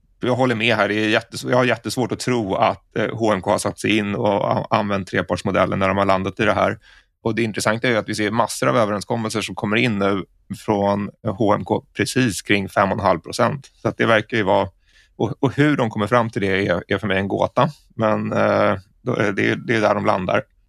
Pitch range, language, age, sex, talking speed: 100-120 Hz, Swedish, 30-49, male, 230 wpm